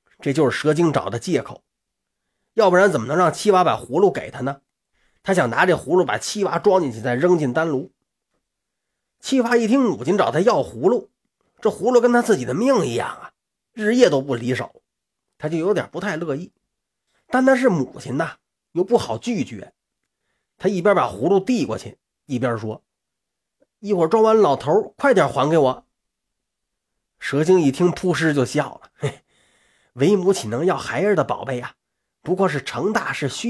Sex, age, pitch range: male, 30-49, 160-240 Hz